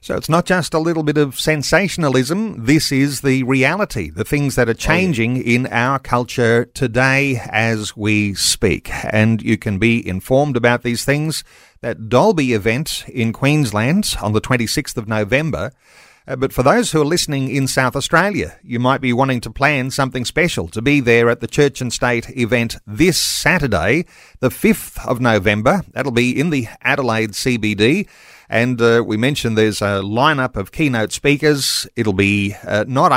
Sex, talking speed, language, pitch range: male, 170 wpm, English, 110-140 Hz